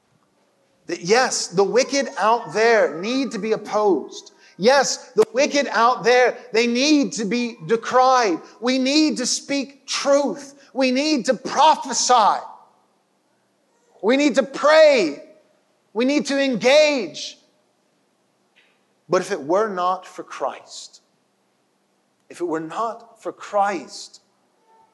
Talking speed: 120 wpm